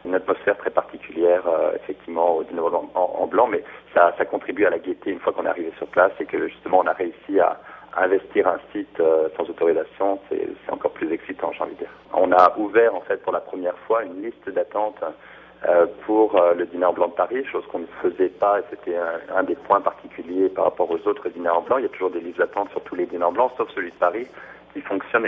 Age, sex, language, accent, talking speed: 40-59, male, French, French, 245 wpm